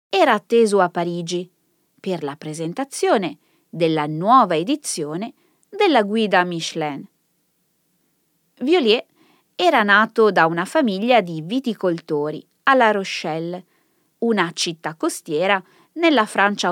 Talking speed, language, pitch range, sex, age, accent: 100 wpm, Italian, 170-270 Hz, female, 20-39, native